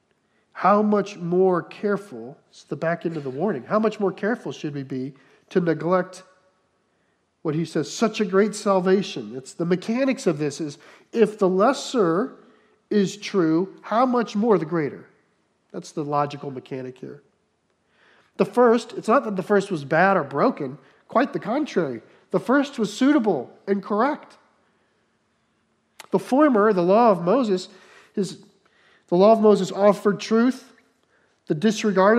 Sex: male